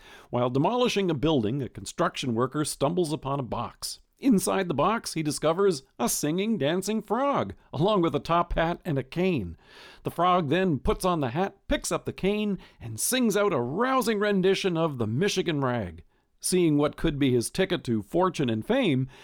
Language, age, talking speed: English, 50-69, 185 wpm